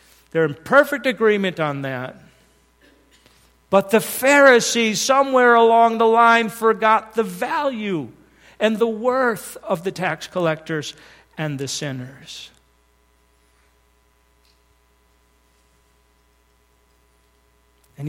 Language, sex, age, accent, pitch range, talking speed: English, male, 50-69, American, 145-230 Hz, 90 wpm